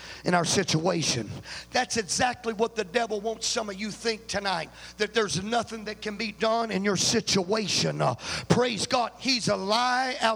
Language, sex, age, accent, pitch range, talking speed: English, male, 50-69, American, 225-285 Hz, 180 wpm